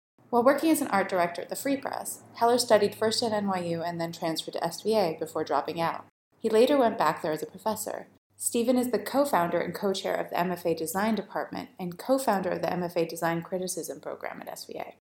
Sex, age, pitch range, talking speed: female, 30-49, 165-225 Hz, 205 wpm